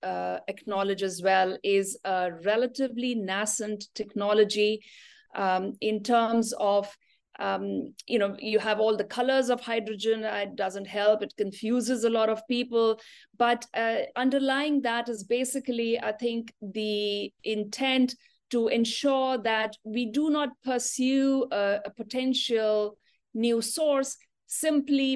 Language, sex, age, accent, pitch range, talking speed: English, female, 50-69, Indian, 200-245 Hz, 130 wpm